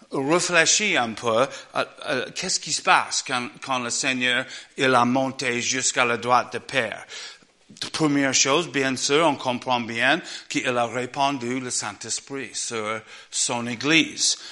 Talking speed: 155 wpm